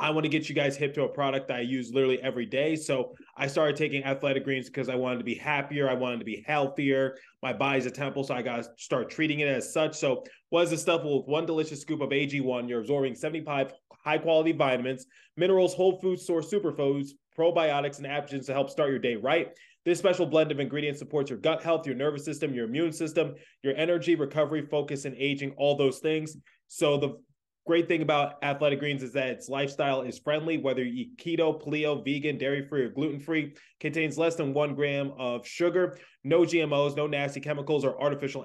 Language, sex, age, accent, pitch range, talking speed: English, male, 20-39, American, 135-155 Hz, 210 wpm